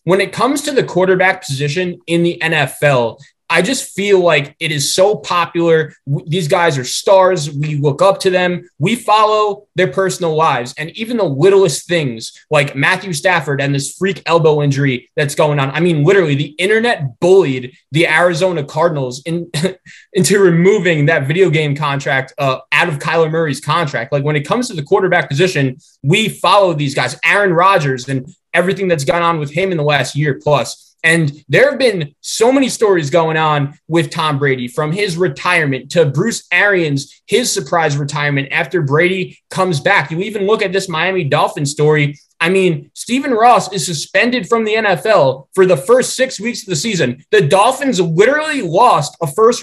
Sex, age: male, 20-39